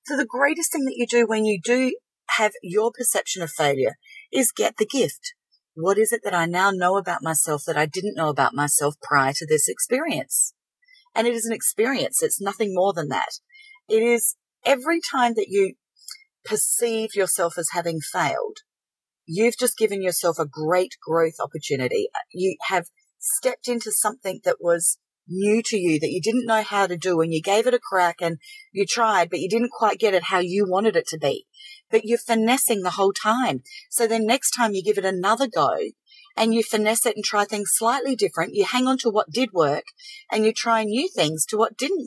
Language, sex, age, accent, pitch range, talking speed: English, female, 40-59, Australian, 190-265 Hz, 205 wpm